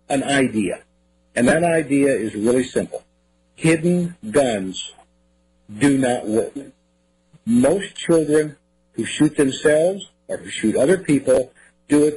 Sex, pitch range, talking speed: male, 105-150 Hz, 125 wpm